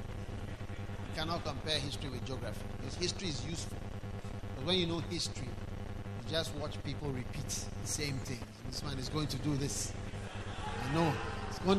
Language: English